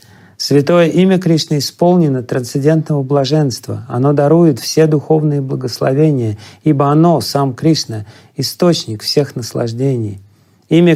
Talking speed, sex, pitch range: 105 wpm, male, 120-150 Hz